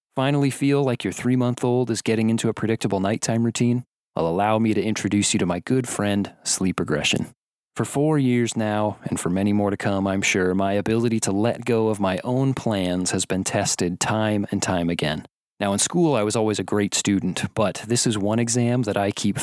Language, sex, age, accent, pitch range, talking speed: English, male, 30-49, American, 100-120 Hz, 215 wpm